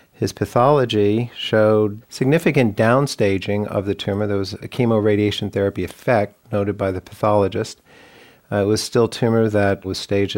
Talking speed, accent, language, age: 150 wpm, American, English, 50-69